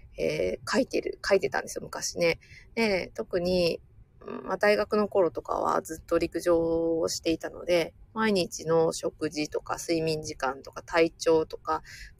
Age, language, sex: 20-39, Japanese, female